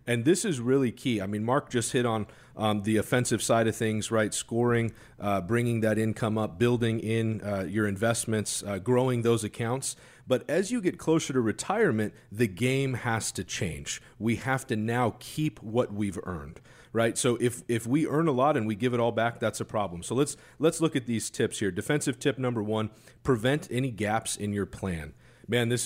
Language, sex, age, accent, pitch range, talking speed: English, male, 40-59, American, 110-125 Hz, 210 wpm